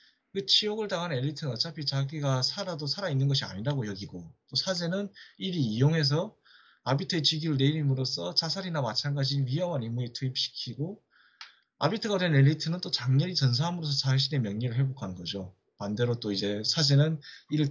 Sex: male